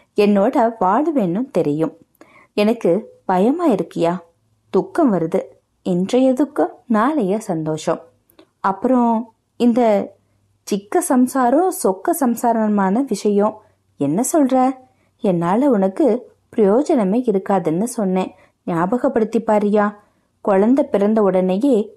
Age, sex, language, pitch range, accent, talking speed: 30-49, female, Tamil, 180-245 Hz, native, 55 wpm